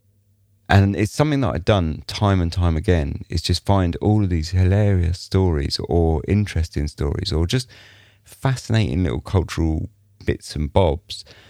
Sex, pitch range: male, 80-105 Hz